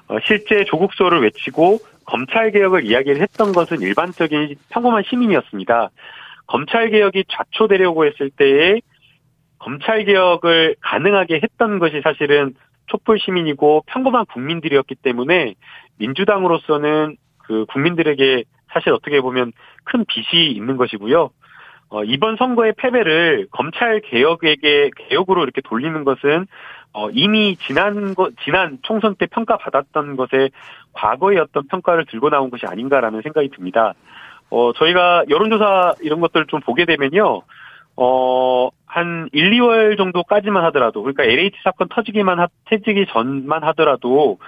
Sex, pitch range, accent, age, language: male, 135-200 Hz, native, 40-59, Korean